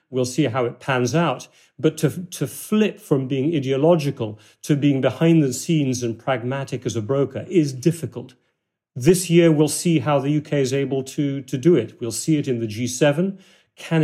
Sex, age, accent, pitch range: male, 40-59, British, 130-160 Hz